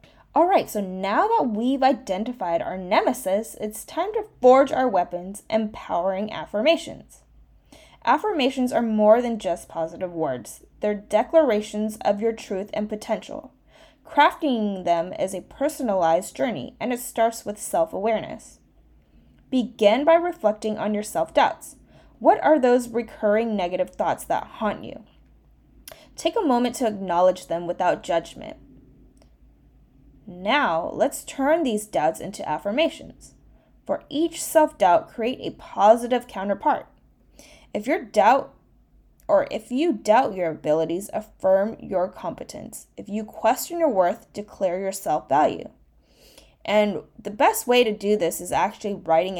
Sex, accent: female, American